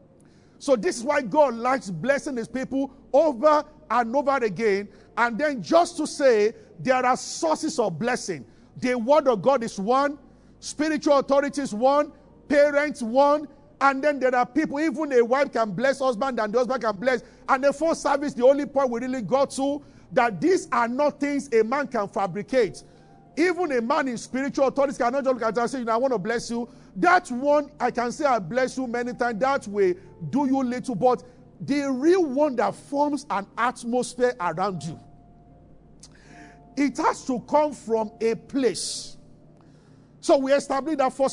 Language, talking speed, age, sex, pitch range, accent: English, 185 wpm, 50-69, male, 225-285 Hz, Nigerian